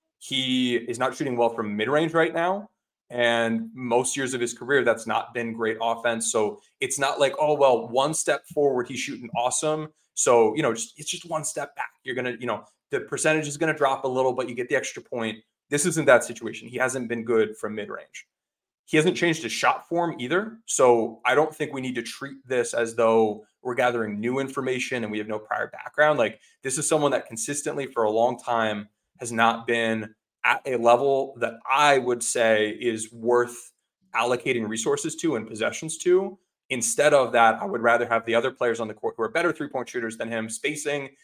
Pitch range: 115-140 Hz